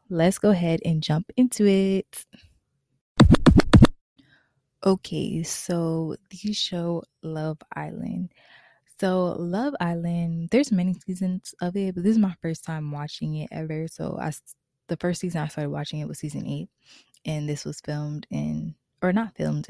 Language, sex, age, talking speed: English, female, 20-39, 150 wpm